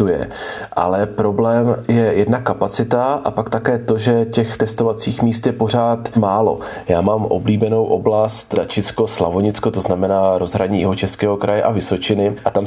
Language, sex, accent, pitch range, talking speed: Czech, male, native, 100-120 Hz, 145 wpm